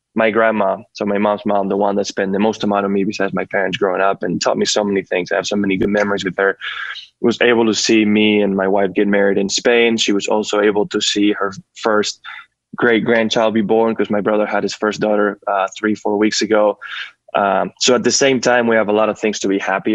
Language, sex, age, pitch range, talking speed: English, male, 20-39, 100-110 Hz, 255 wpm